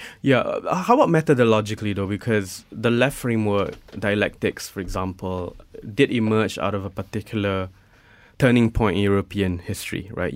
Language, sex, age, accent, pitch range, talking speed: English, male, 20-39, Malaysian, 100-120 Hz, 140 wpm